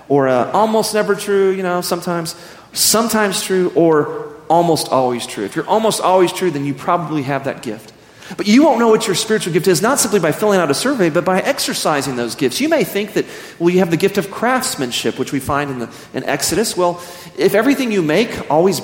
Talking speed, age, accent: 215 wpm, 40-59, American